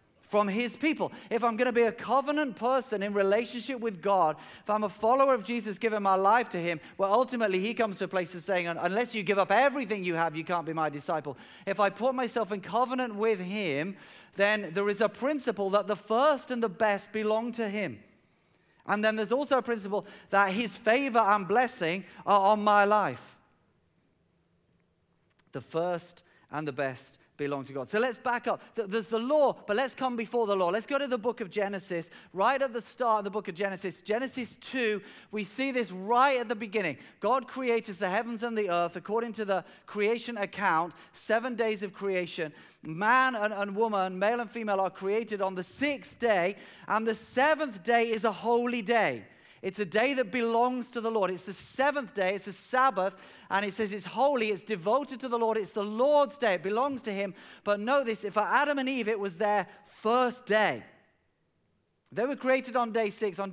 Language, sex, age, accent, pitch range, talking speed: English, male, 40-59, British, 195-240 Hz, 205 wpm